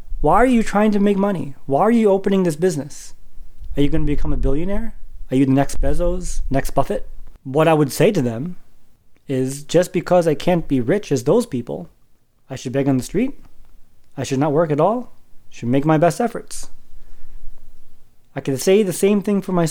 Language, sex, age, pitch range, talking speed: English, male, 30-49, 135-185 Hz, 205 wpm